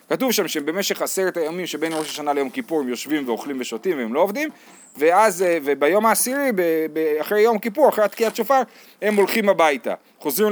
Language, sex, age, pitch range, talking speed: Hebrew, male, 30-49, 150-225 Hz, 175 wpm